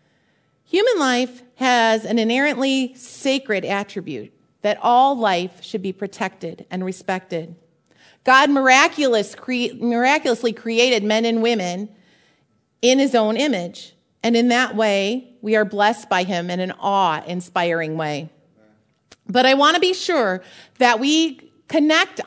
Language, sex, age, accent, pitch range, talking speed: English, female, 40-59, American, 215-280 Hz, 130 wpm